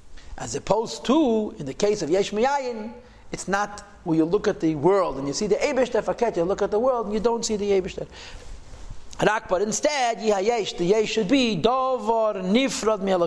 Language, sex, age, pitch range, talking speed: English, male, 50-69, 180-230 Hz, 190 wpm